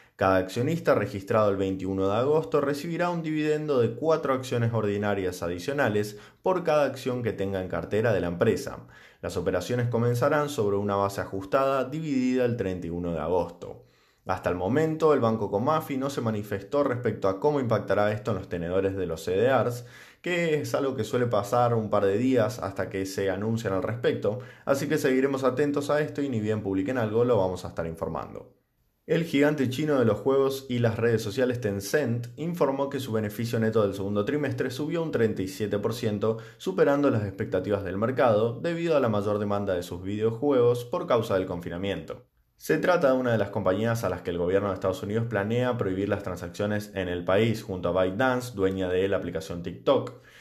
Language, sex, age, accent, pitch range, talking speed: Spanish, male, 20-39, Argentinian, 95-135 Hz, 190 wpm